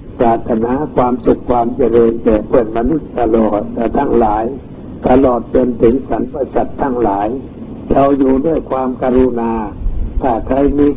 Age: 60-79